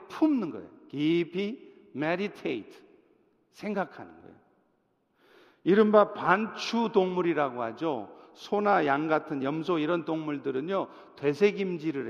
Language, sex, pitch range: Korean, male, 175-240 Hz